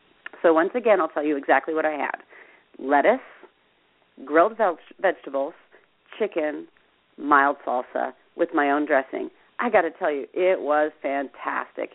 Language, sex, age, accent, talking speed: English, female, 40-59, American, 145 wpm